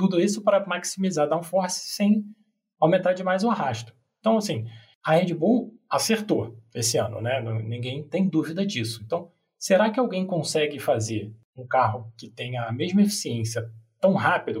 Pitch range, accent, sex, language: 120-200 Hz, Brazilian, male, Portuguese